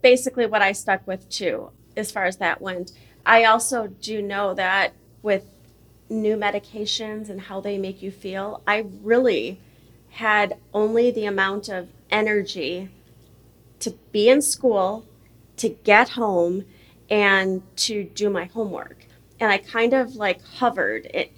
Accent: American